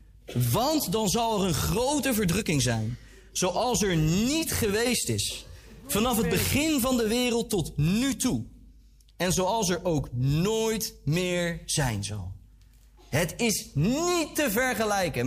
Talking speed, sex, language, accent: 140 wpm, male, Dutch, Dutch